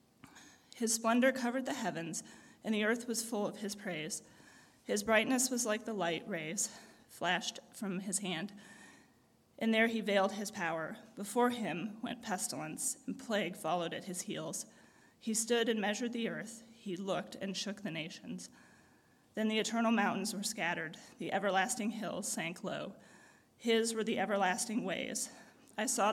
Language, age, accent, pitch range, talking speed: English, 30-49, American, 190-230 Hz, 160 wpm